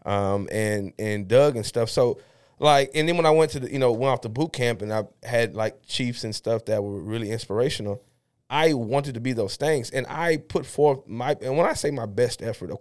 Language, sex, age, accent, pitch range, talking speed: English, male, 30-49, American, 110-135 Hz, 245 wpm